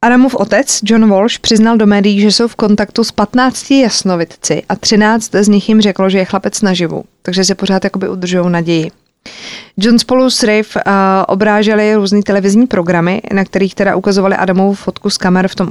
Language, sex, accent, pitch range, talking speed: Czech, female, native, 175-205 Hz, 185 wpm